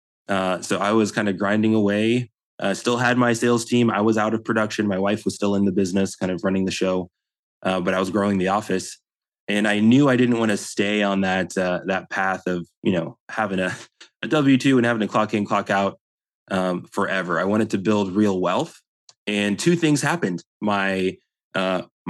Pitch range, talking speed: 95-110 Hz, 215 wpm